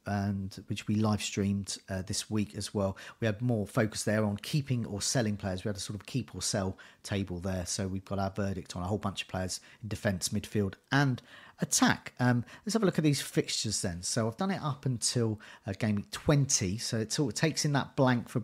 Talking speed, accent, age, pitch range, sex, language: 240 wpm, British, 40-59, 100-125 Hz, male, English